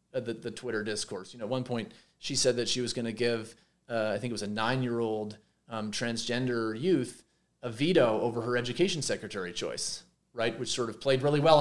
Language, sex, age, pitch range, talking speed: English, male, 30-49, 115-150 Hz, 210 wpm